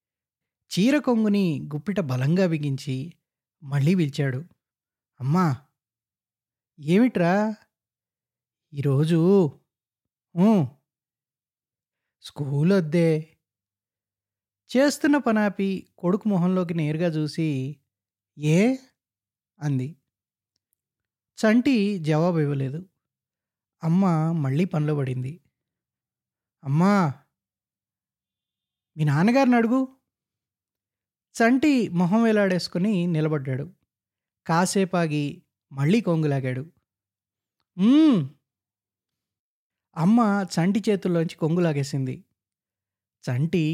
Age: 20-39